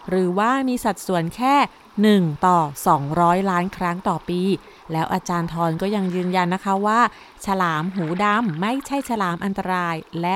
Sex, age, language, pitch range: female, 30-49, Thai, 175-225 Hz